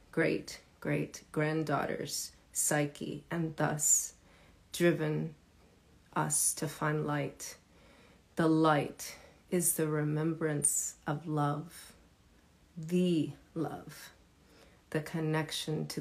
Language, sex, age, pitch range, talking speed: English, female, 40-59, 150-175 Hz, 80 wpm